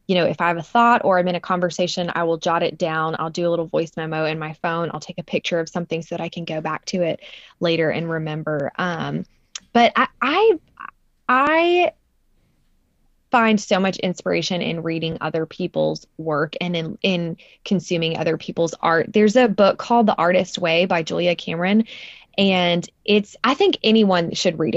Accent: American